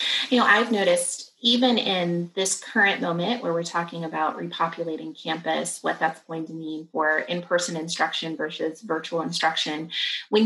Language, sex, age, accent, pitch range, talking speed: English, female, 30-49, American, 165-220 Hz, 160 wpm